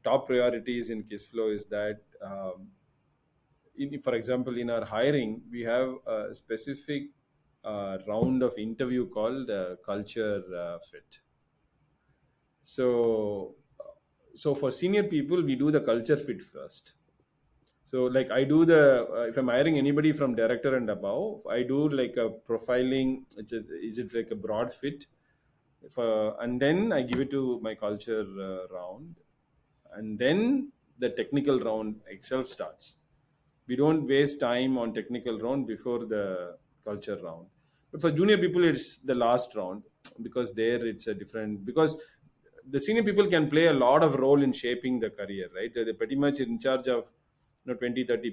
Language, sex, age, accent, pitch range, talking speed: English, male, 30-49, Indian, 115-150 Hz, 160 wpm